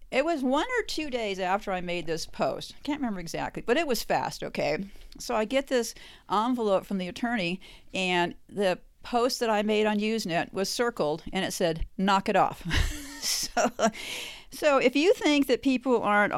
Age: 50-69